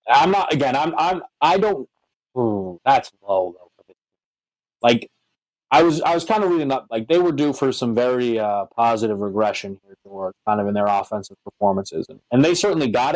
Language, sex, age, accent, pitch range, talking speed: English, male, 20-39, American, 110-145 Hz, 190 wpm